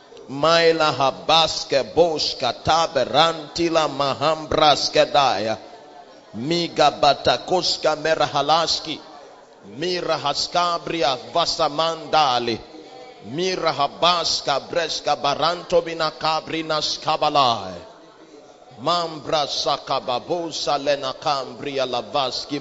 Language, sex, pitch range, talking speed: English, male, 135-165 Hz, 65 wpm